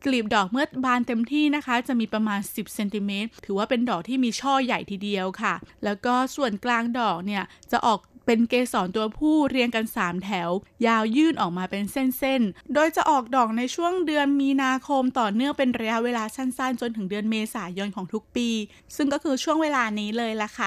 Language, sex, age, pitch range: Thai, female, 20-39, 215-265 Hz